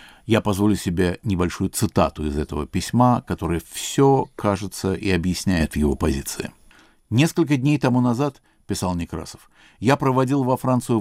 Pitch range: 90-130 Hz